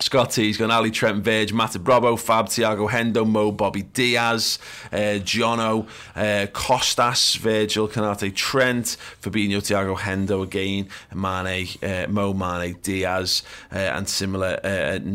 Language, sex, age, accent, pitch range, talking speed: English, male, 30-49, British, 90-110 Hz, 125 wpm